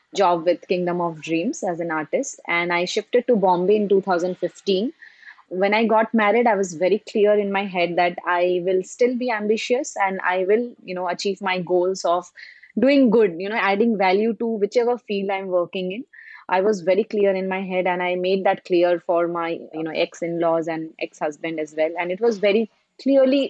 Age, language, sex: 20-39, English, female